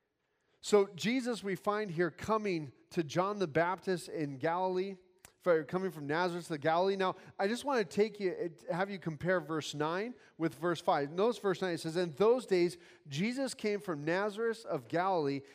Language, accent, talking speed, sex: English, American, 180 wpm, male